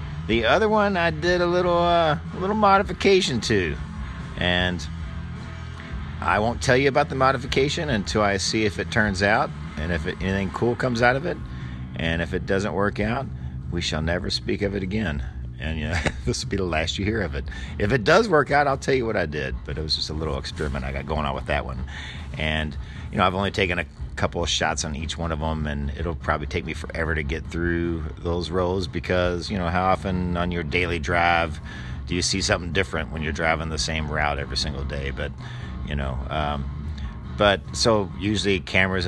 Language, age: English, 40-59